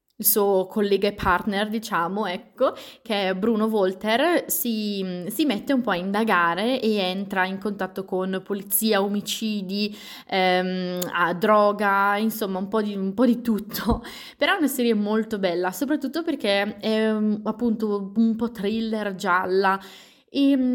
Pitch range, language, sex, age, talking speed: 185-220 Hz, Italian, female, 20-39, 145 wpm